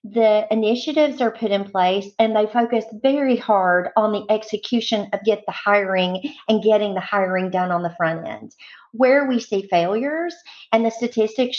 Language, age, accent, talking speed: English, 40-59, American, 175 wpm